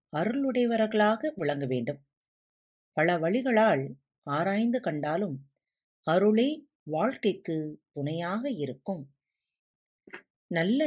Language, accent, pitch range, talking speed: Tamil, native, 150-240 Hz, 65 wpm